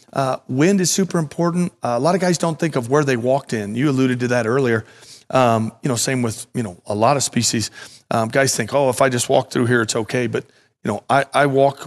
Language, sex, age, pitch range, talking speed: English, male, 40-59, 115-140 Hz, 260 wpm